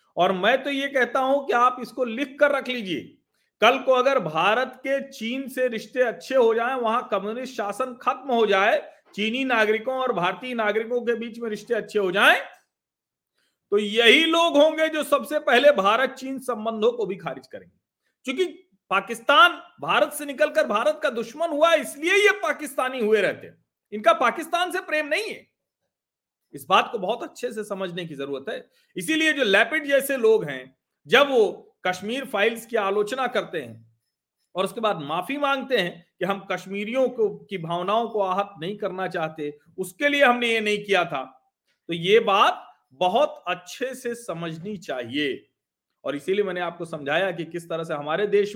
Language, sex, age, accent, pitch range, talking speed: Hindi, male, 40-59, native, 195-275 Hz, 175 wpm